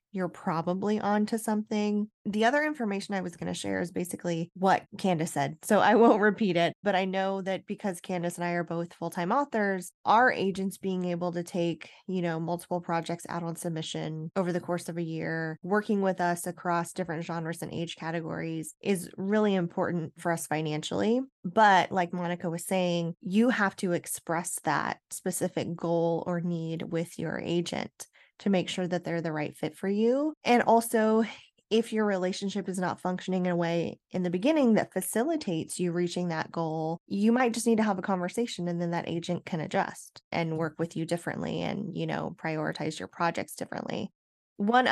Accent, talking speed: American, 190 wpm